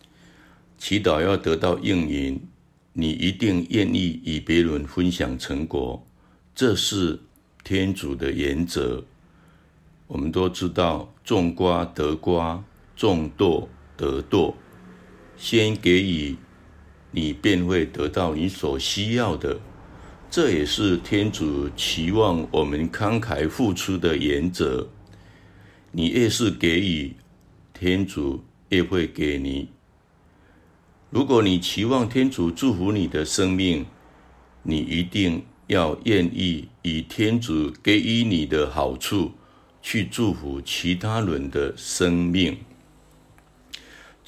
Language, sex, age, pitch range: Chinese, male, 60-79, 75-95 Hz